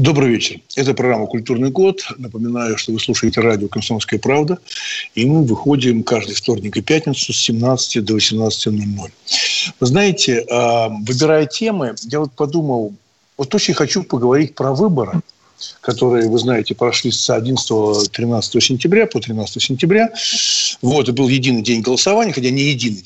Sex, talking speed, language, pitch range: male, 145 wpm, Russian, 120-155 Hz